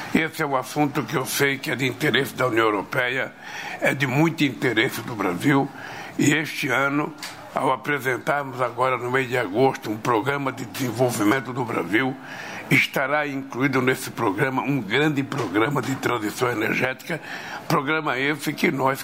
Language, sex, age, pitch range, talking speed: Portuguese, male, 60-79, 125-145 Hz, 160 wpm